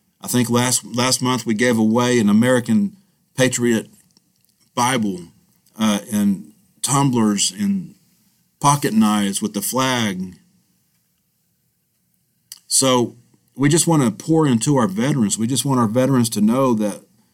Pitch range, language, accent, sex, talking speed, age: 105-130 Hz, English, American, male, 130 wpm, 40-59